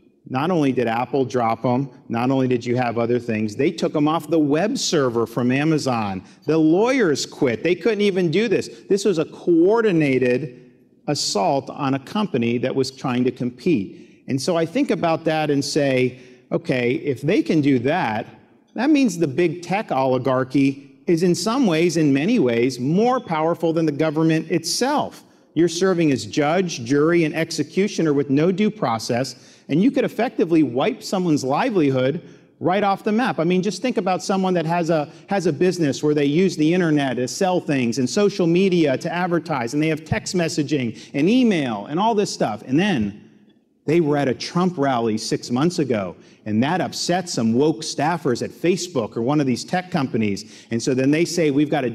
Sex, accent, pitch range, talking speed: male, American, 130-175 Hz, 190 wpm